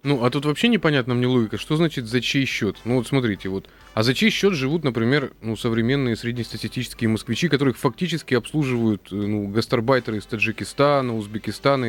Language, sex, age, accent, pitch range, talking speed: Russian, male, 20-39, native, 120-180 Hz, 170 wpm